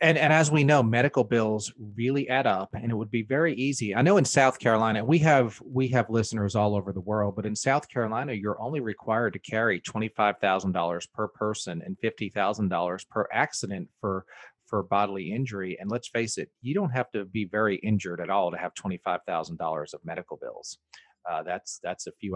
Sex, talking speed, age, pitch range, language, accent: male, 220 wpm, 40-59, 100-125 Hz, English, American